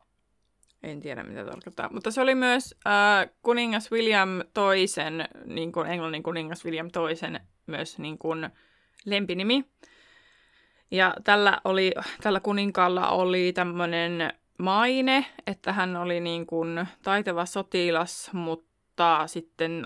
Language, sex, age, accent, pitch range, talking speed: Finnish, female, 20-39, native, 170-215 Hz, 115 wpm